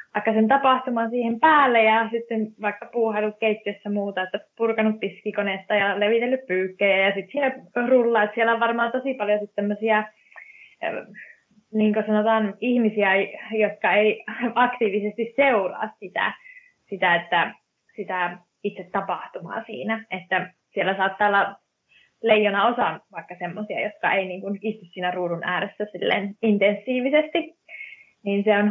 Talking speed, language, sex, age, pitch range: 130 wpm, Finnish, female, 20-39, 185-225 Hz